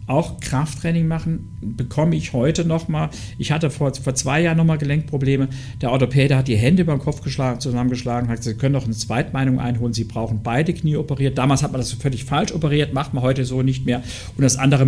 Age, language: 50-69, German